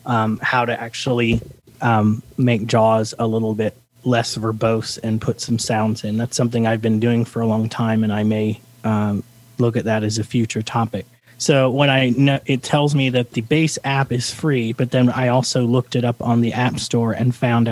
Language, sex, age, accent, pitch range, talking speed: English, male, 30-49, American, 115-125 Hz, 215 wpm